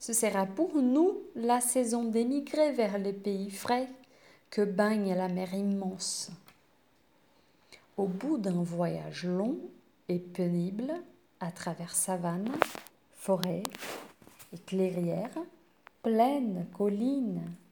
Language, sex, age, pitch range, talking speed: French, female, 40-59, 185-250 Hz, 105 wpm